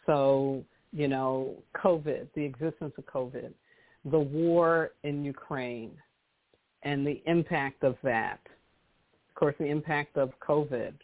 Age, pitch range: 50-69, 135-180 Hz